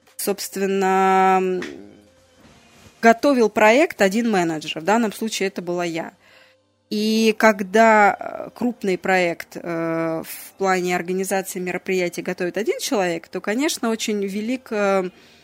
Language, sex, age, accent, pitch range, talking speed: Russian, female, 20-39, native, 185-225 Hz, 100 wpm